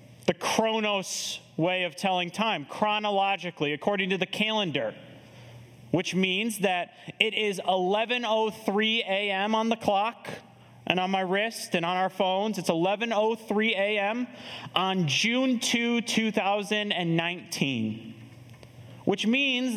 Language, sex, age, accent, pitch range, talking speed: English, male, 30-49, American, 165-225 Hz, 115 wpm